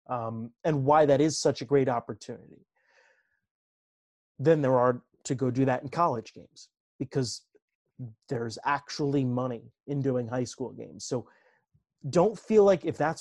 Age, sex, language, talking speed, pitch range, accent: 30-49, male, English, 155 wpm, 125-160 Hz, American